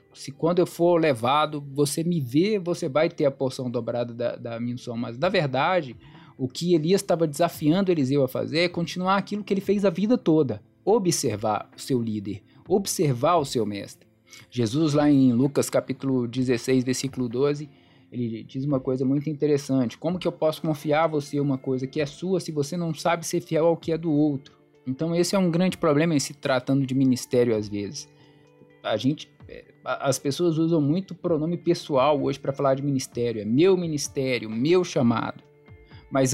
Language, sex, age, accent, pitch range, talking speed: Portuguese, male, 20-39, Brazilian, 130-165 Hz, 190 wpm